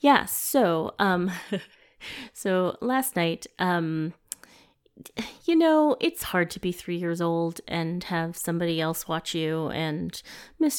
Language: English